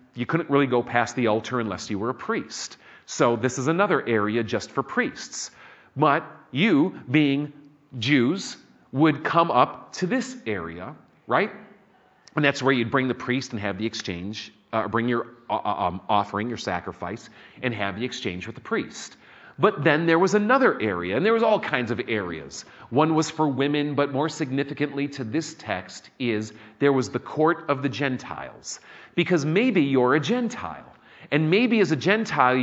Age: 40-59